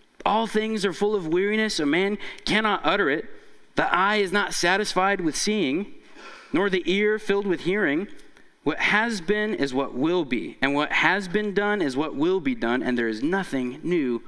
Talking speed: 195 wpm